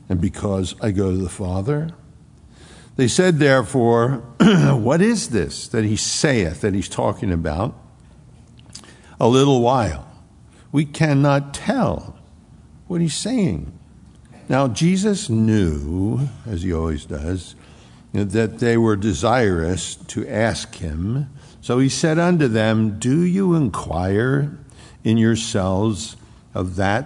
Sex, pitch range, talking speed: male, 100-130 Hz, 120 wpm